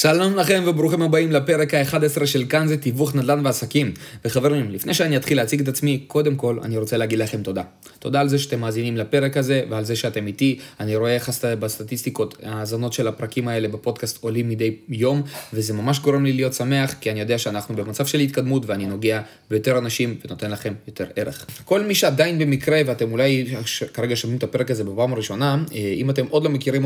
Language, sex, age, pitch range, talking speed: Hebrew, male, 20-39, 110-145 Hz, 175 wpm